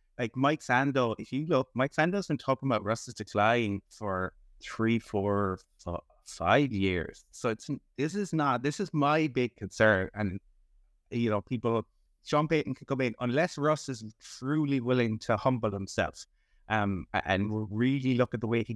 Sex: male